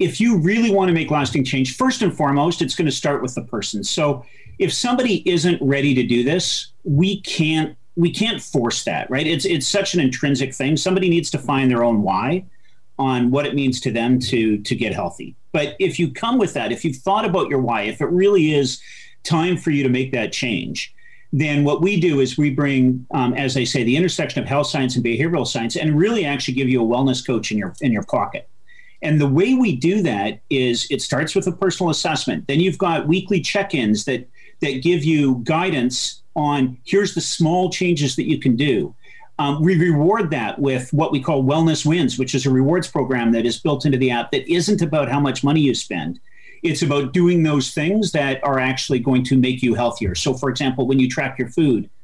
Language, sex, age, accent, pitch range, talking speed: English, male, 40-59, American, 130-170 Hz, 225 wpm